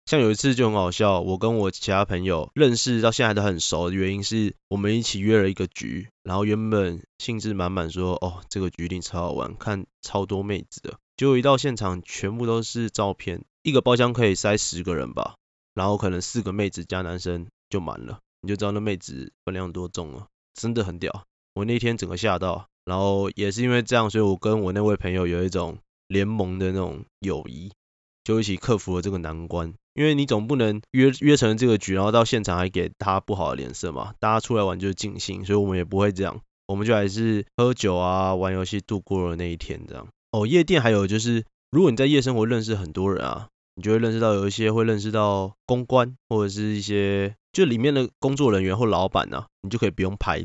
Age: 20-39